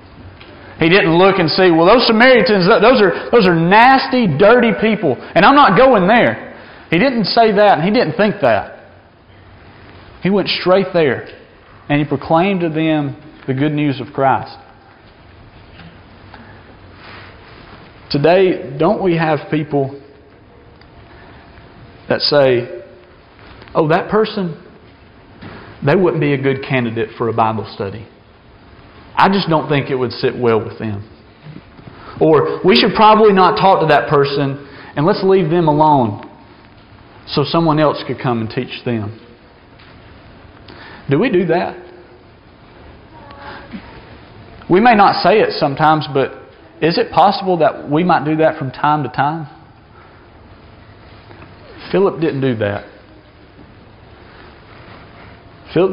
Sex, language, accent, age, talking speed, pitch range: male, English, American, 40-59, 130 wpm, 110-170 Hz